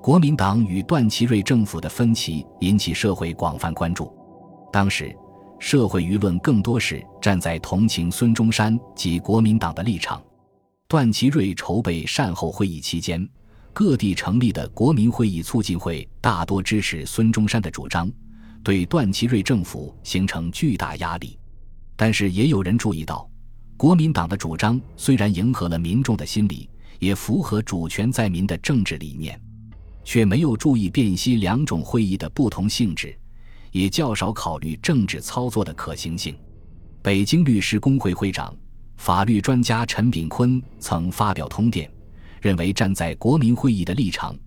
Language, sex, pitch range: Chinese, male, 85-115 Hz